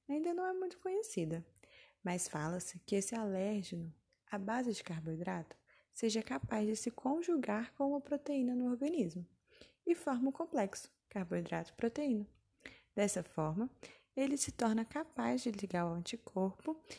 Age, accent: 20-39, Brazilian